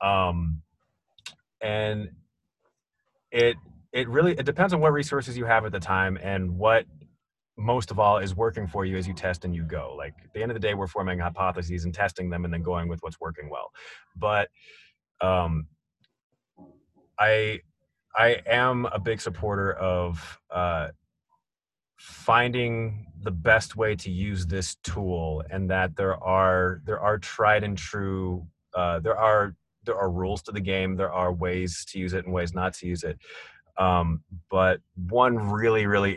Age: 30-49